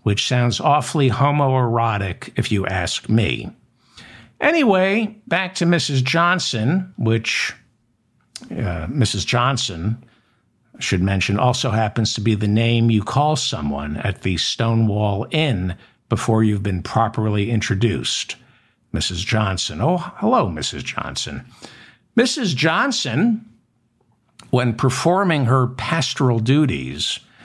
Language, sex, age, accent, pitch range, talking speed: English, male, 60-79, American, 110-135 Hz, 110 wpm